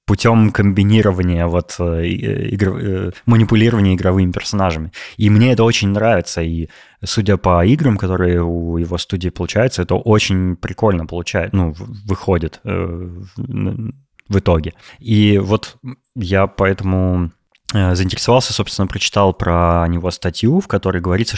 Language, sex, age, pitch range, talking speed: Russian, male, 20-39, 85-110 Hz, 130 wpm